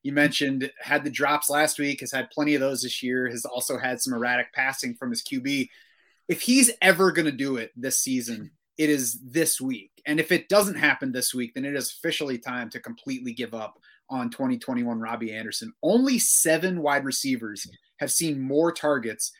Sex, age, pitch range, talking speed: male, 30-49, 135-195 Hz, 200 wpm